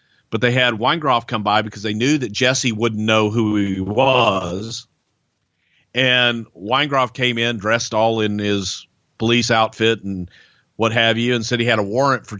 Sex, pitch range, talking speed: male, 100-125 Hz, 180 wpm